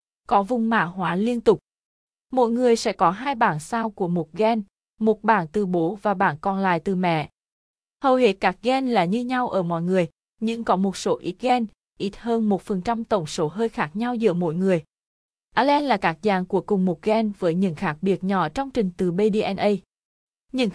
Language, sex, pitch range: Vietnamese, female, 185-235 Hz